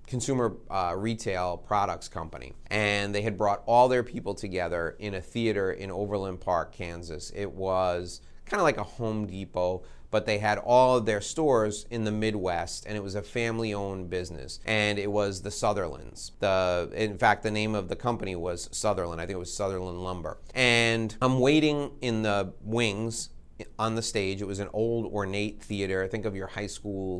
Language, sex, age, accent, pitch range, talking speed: English, male, 30-49, American, 90-115 Hz, 190 wpm